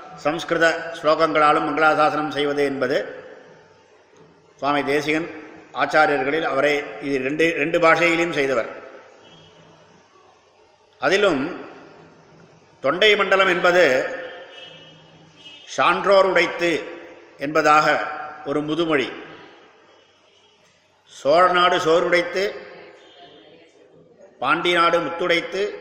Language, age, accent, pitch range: Tamil, 50-69, native, 155-185 Hz